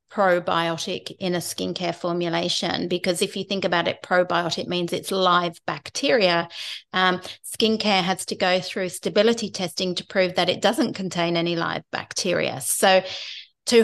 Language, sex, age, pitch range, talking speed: English, female, 40-59, 175-205 Hz, 150 wpm